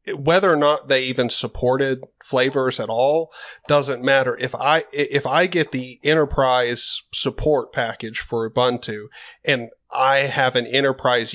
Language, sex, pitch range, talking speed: English, male, 125-145 Hz, 145 wpm